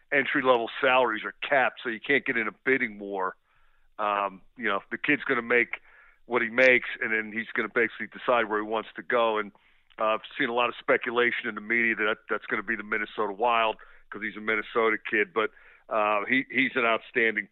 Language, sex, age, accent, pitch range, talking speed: English, male, 50-69, American, 115-135 Hz, 225 wpm